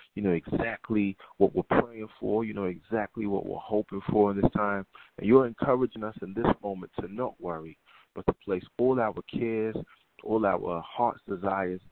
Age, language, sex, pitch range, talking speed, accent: 30-49, English, male, 90-110 Hz, 185 wpm, American